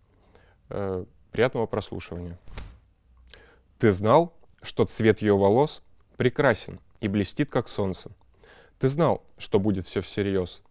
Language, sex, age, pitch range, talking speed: Russian, male, 20-39, 95-125 Hz, 105 wpm